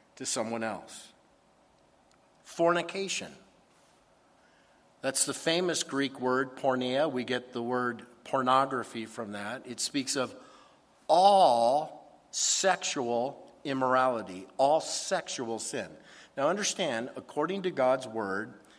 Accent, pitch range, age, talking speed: American, 115-155 Hz, 50-69, 100 wpm